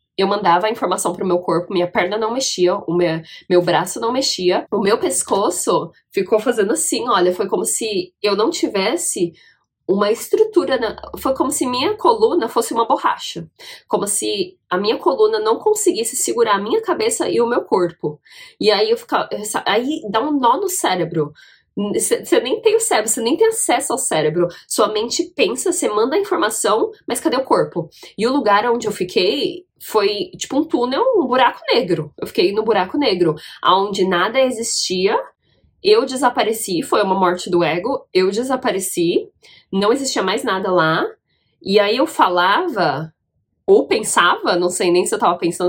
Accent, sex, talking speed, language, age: Brazilian, female, 180 wpm, Portuguese, 20-39